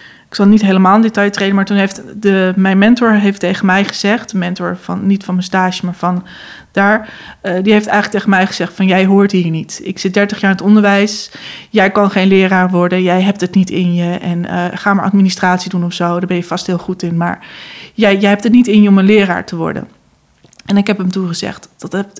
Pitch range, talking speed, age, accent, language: 185-225 Hz, 245 wpm, 20-39, Dutch, Dutch